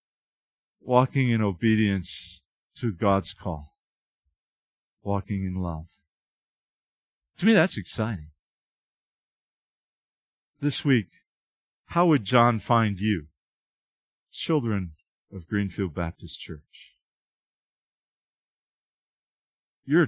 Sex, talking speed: male, 80 wpm